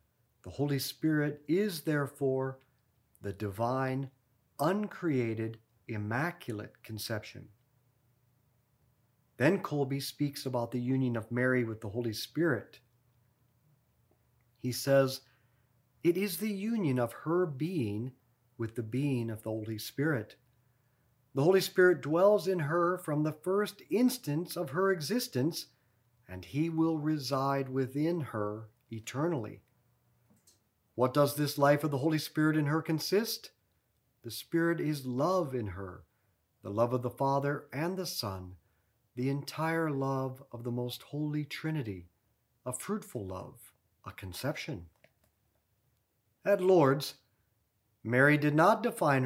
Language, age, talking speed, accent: English, 50-69, 125 wpm, American